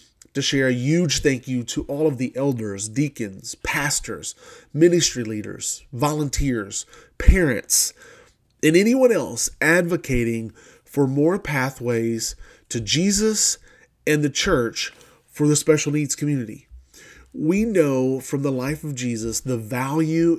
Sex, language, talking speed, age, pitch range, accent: male, English, 125 wpm, 30-49, 120-155 Hz, American